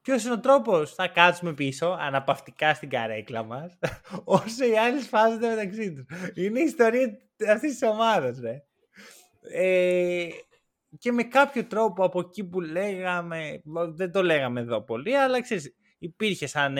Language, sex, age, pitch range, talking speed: Greek, male, 20-39, 130-195 Hz, 145 wpm